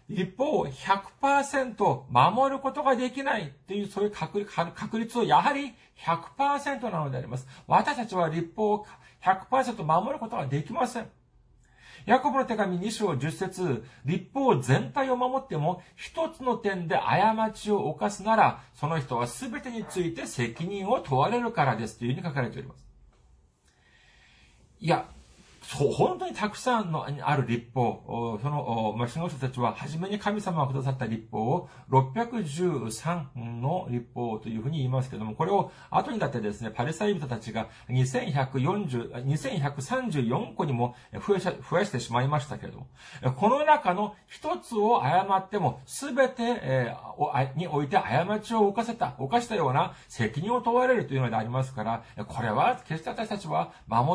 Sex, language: male, Japanese